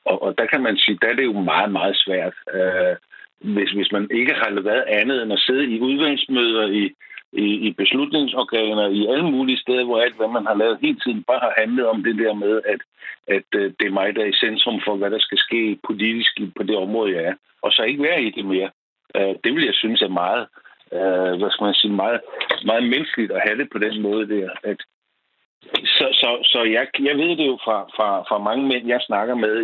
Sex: male